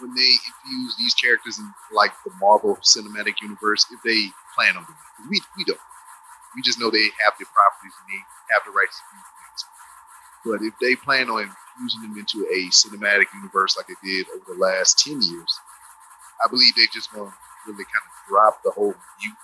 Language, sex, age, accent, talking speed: English, male, 30-49, American, 205 wpm